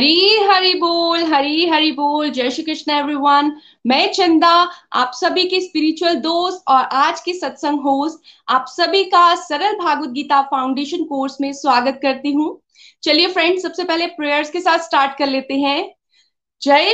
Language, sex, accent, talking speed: Hindi, female, native, 160 wpm